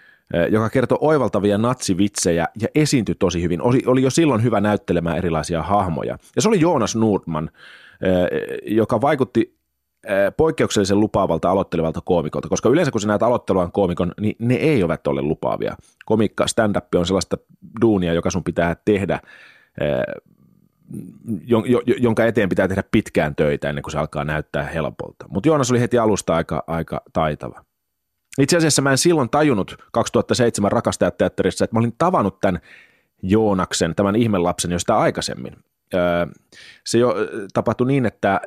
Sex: male